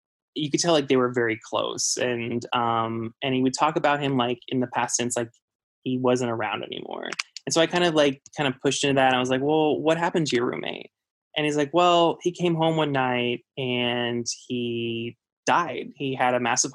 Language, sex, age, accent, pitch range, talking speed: English, male, 20-39, American, 125-150 Hz, 220 wpm